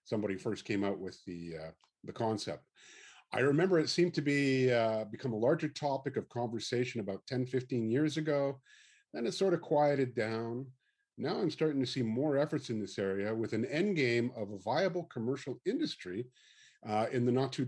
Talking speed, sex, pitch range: 195 wpm, male, 110-145 Hz